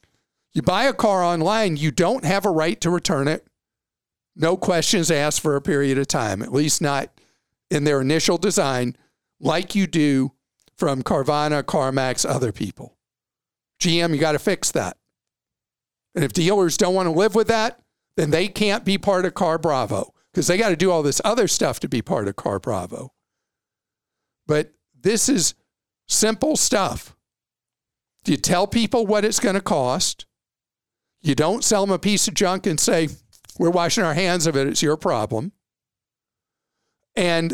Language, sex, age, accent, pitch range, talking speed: English, male, 50-69, American, 150-210 Hz, 170 wpm